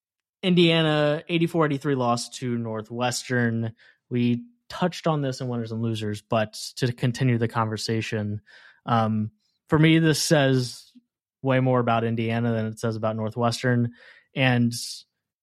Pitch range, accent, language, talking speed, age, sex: 115-150 Hz, American, English, 130 wpm, 20-39, male